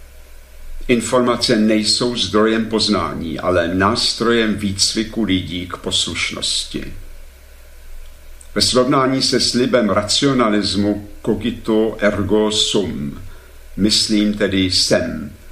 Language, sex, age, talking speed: Slovak, male, 50-69, 80 wpm